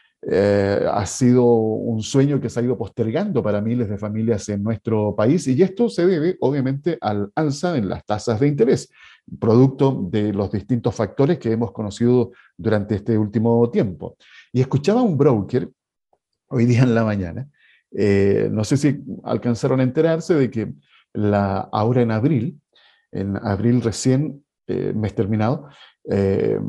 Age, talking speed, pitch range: 50-69, 155 wpm, 110-150 Hz